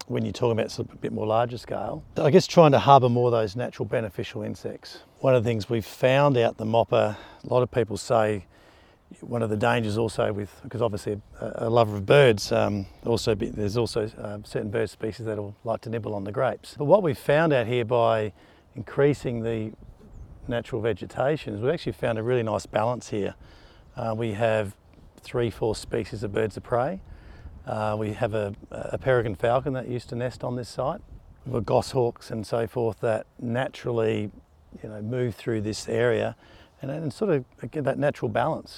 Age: 40-59